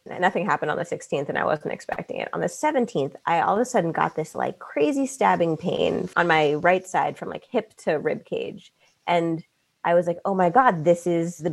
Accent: American